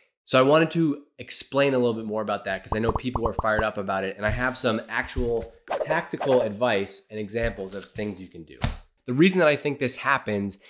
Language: English